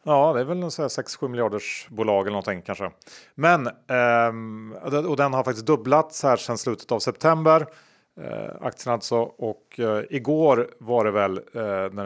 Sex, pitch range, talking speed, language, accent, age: male, 100-130 Hz, 145 wpm, Swedish, Norwegian, 30-49